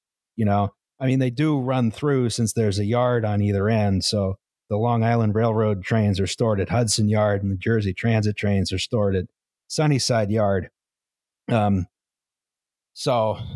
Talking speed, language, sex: 170 wpm, English, male